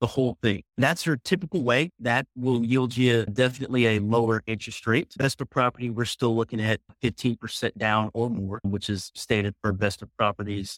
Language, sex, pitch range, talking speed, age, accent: English, male, 105-125 Hz, 190 wpm, 30-49, American